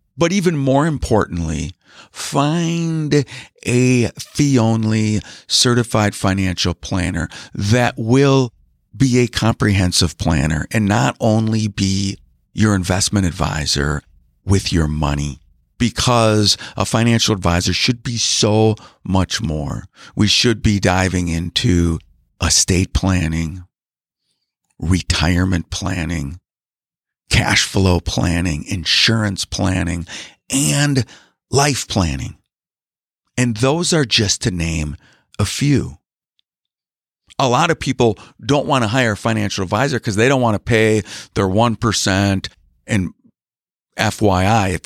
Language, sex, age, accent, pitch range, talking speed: English, male, 50-69, American, 90-120 Hz, 110 wpm